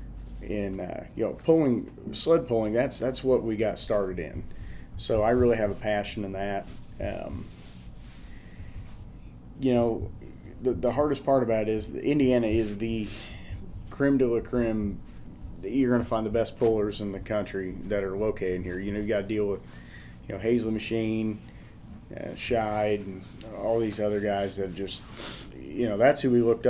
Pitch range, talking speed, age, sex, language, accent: 95-115 Hz, 180 wpm, 30-49, male, English, American